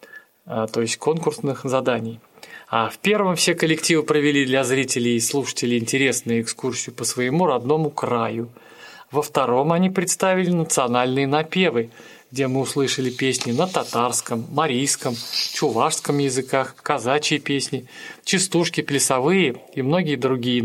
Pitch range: 125-160 Hz